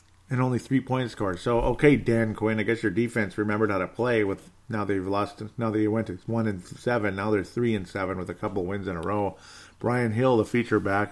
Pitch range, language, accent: 100-115 Hz, English, American